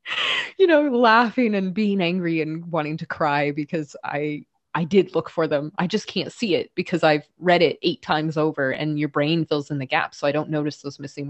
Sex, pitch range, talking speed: female, 150-195 Hz, 225 wpm